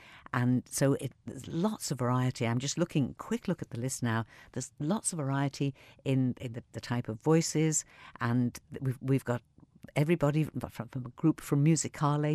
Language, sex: English, female